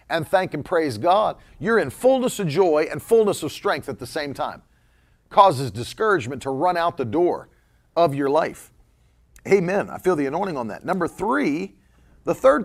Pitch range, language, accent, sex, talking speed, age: 150-200 Hz, English, American, male, 185 wpm, 40-59